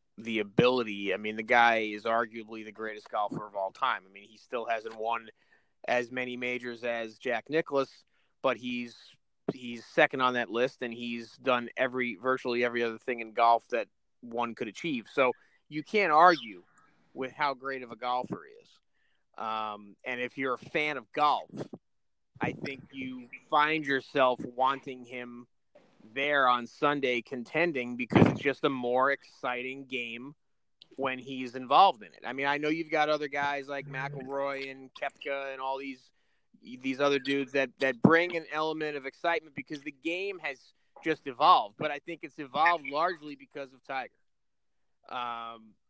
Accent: American